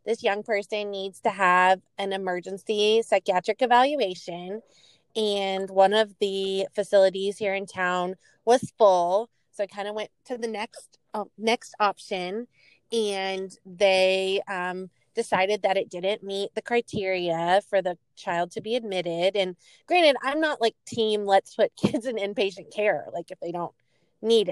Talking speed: 155 wpm